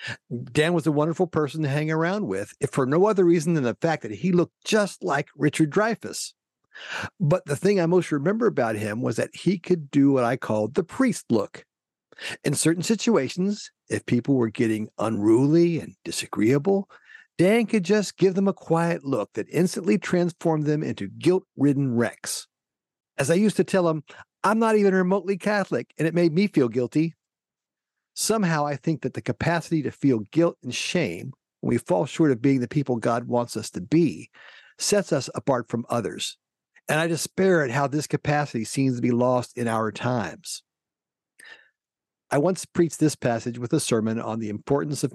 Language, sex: English, male